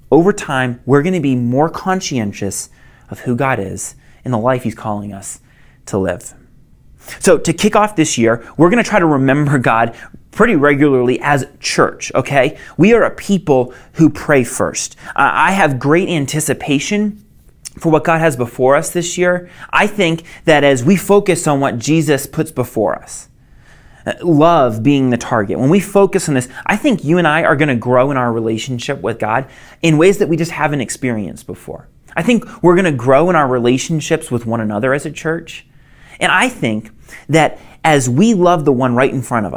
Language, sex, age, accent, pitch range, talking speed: English, male, 30-49, American, 125-175 Hz, 195 wpm